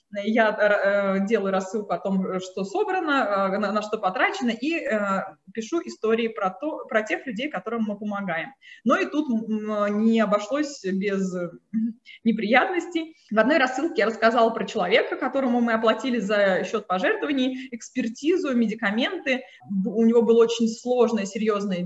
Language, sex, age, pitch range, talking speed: Russian, female, 20-39, 195-260 Hz, 135 wpm